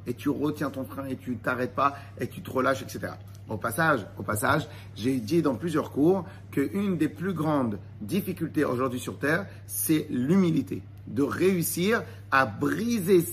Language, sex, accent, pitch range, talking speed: French, male, French, 110-165 Hz, 165 wpm